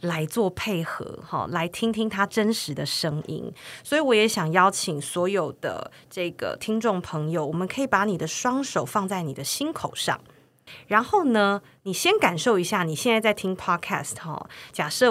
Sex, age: female, 30-49